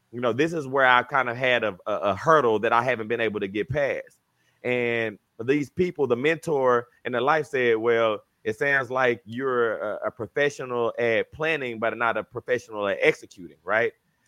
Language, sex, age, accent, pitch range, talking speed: English, male, 30-49, American, 125-155 Hz, 190 wpm